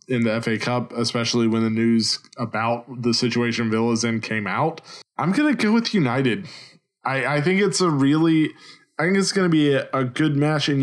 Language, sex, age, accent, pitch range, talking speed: English, male, 20-39, American, 115-160 Hz, 210 wpm